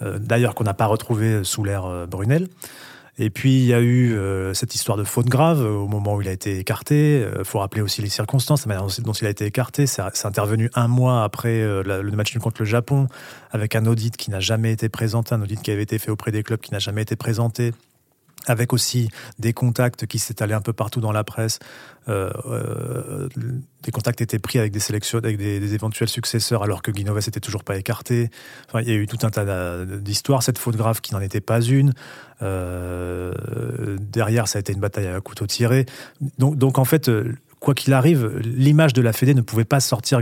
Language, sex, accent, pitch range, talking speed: French, male, French, 105-125 Hz, 220 wpm